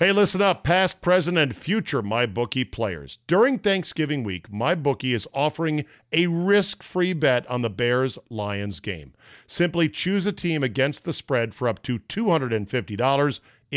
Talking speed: 150 wpm